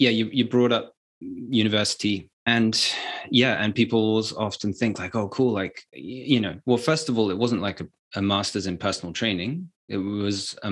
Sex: male